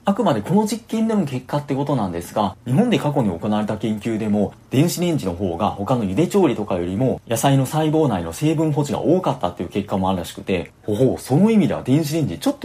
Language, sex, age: Japanese, male, 30-49